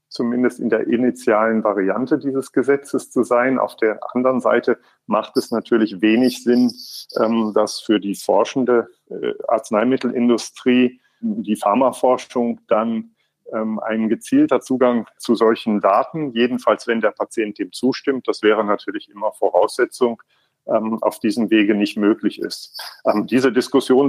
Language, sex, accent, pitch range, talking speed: German, male, German, 110-130 Hz, 125 wpm